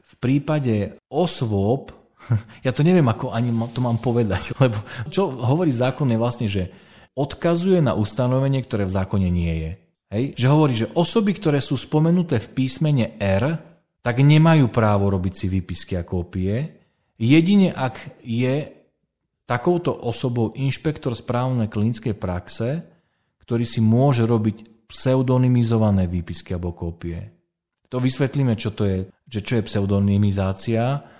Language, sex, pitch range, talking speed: Slovak, male, 100-135 Hz, 135 wpm